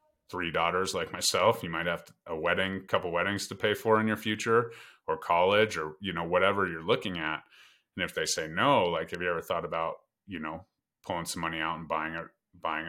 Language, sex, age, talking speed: English, male, 30-49, 225 wpm